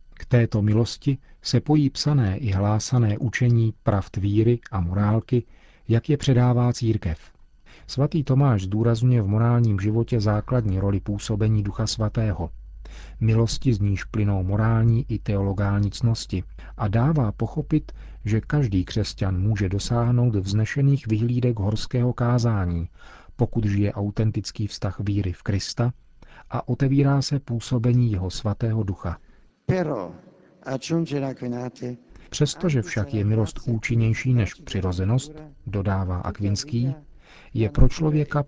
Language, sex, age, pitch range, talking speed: Czech, male, 40-59, 100-125 Hz, 115 wpm